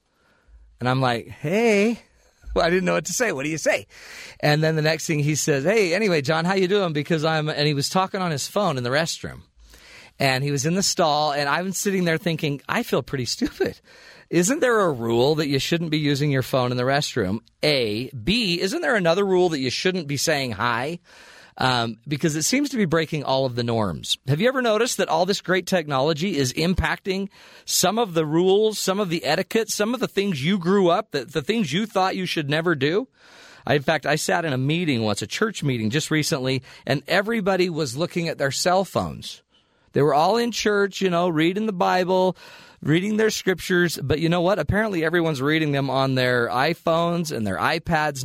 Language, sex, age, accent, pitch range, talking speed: English, male, 40-59, American, 140-185 Hz, 220 wpm